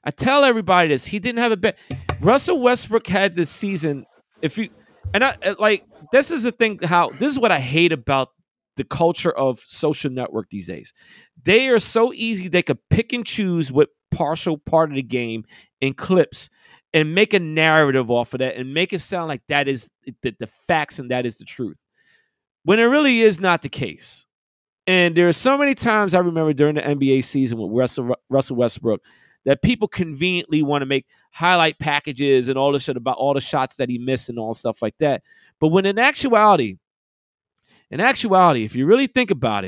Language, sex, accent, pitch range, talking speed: English, male, American, 135-215 Hz, 205 wpm